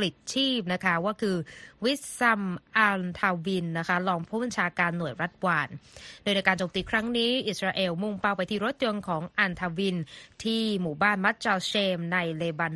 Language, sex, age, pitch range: Thai, female, 20-39, 175-220 Hz